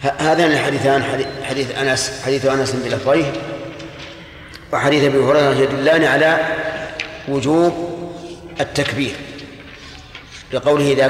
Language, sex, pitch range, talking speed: Arabic, male, 135-150 Hz, 90 wpm